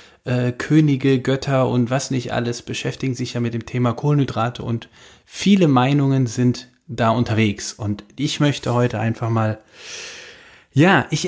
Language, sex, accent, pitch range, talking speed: German, male, German, 120-150 Hz, 145 wpm